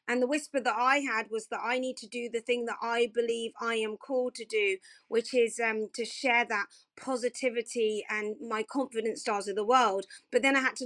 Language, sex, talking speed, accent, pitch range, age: English, female, 225 wpm, British, 220-265 Hz, 40-59